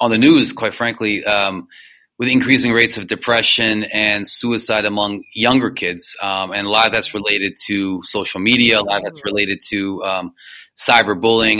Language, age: English, 20-39